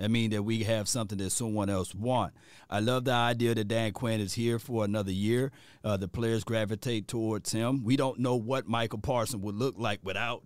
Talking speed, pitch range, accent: 220 wpm, 110-135 Hz, American